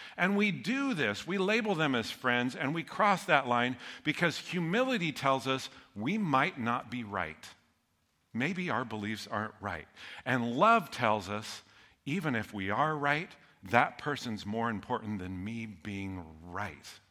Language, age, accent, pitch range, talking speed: English, 50-69, American, 100-130 Hz, 160 wpm